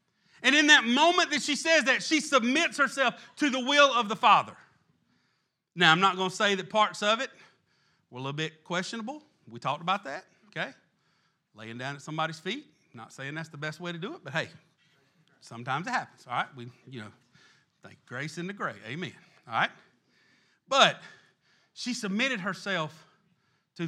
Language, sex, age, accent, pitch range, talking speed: English, male, 40-59, American, 180-260 Hz, 185 wpm